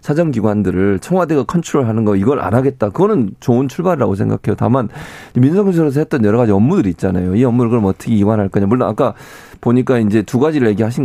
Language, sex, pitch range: Korean, male, 105-135 Hz